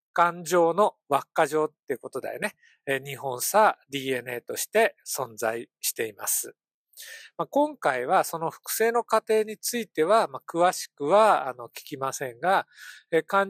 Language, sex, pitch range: Japanese, male, 145-230 Hz